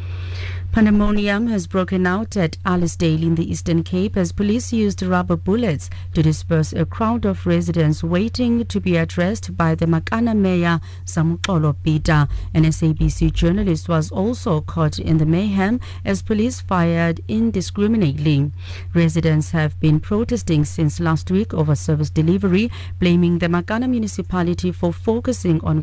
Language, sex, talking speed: English, female, 140 wpm